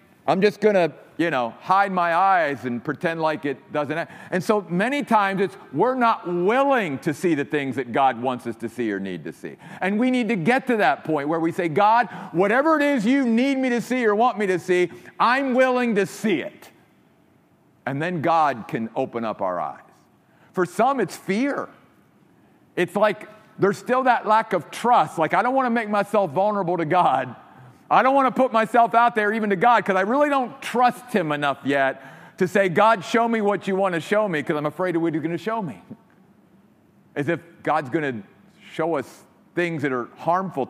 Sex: male